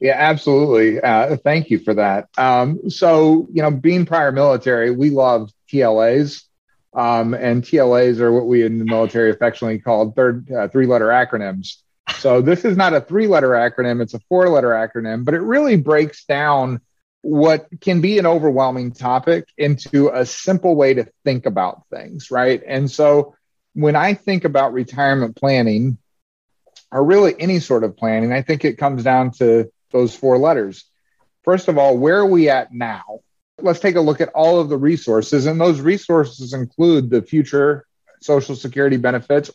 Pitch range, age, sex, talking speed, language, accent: 120-150 Hz, 30-49, male, 165 wpm, English, American